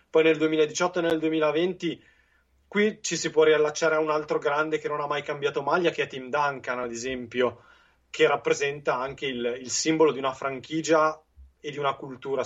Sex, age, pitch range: male, 30-49, 135-160 Hz